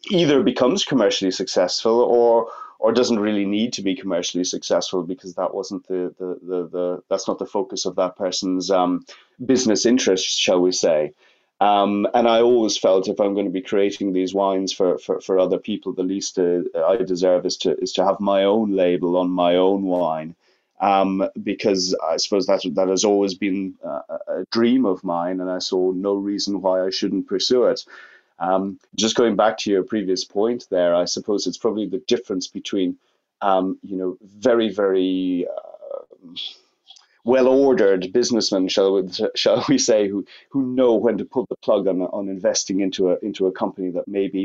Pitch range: 95-115 Hz